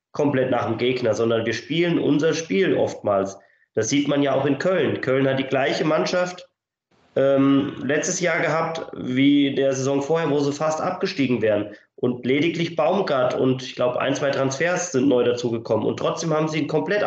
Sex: male